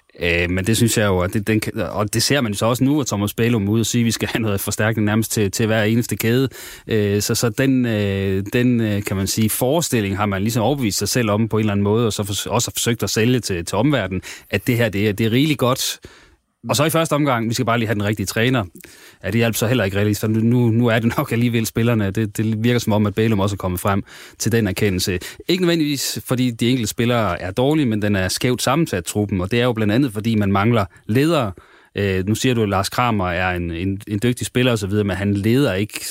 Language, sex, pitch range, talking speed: Danish, male, 100-115 Hz, 260 wpm